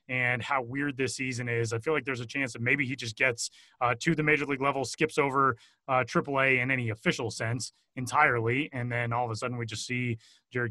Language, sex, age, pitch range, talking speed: English, male, 30-49, 125-160 Hz, 240 wpm